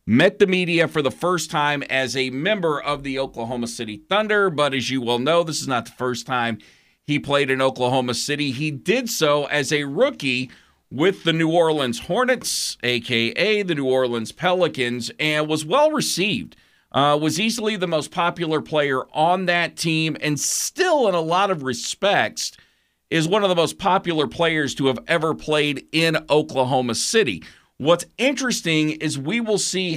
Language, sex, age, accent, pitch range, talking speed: English, male, 40-59, American, 130-170 Hz, 170 wpm